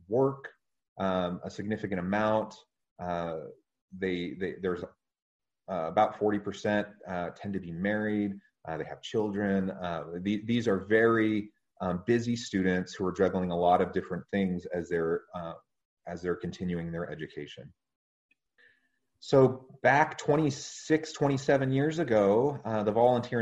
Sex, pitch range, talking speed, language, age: male, 90-110 Hz, 140 wpm, English, 30-49